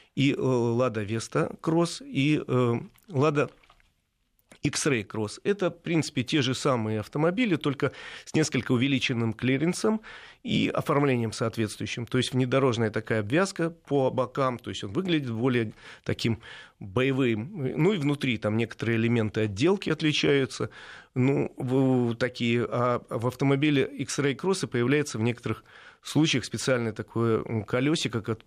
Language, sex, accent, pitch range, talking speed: Russian, male, native, 115-150 Hz, 125 wpm